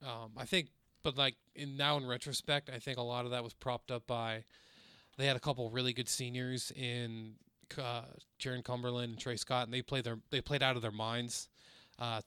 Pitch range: 115-135 Hz